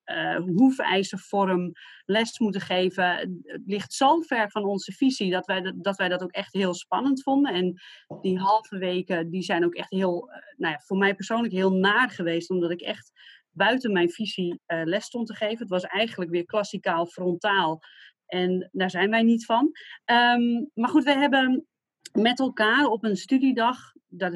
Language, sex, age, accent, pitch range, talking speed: Dutch, female, 30-49, Dutch, 180-225 Hz, 185 wpm